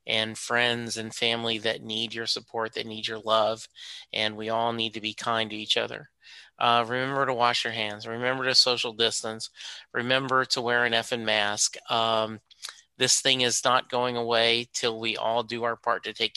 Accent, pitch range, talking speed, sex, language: American, 110-125 Hz, 195 wpm, male, English